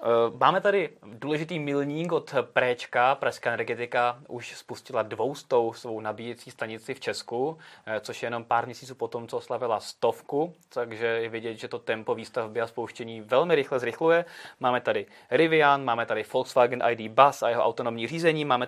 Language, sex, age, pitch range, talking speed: Czech, male, 20-39, 115-145 Hz, 160 wpm